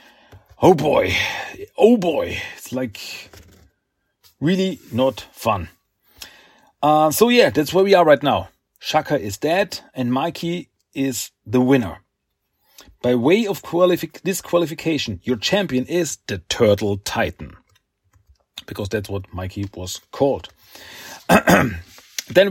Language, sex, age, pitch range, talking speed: German, male, 40-59, 105-155 Hz, 115 wpm